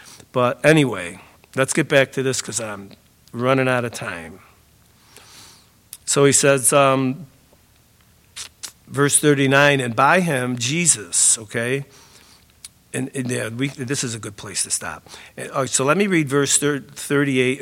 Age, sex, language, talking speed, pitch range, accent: 50-69, male, English, 150 wpm, 120-155 Hz, American